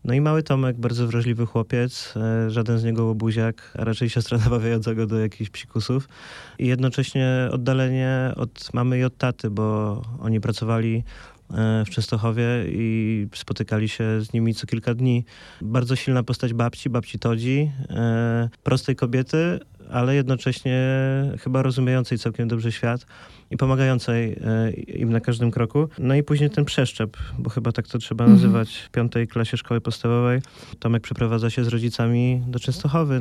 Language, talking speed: Polish, 150 wpm